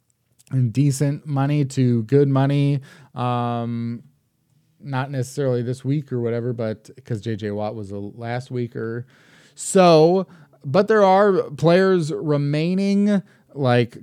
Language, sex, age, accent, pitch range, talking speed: English, male, 20-39, American, 120-145 Hz, 120 wpm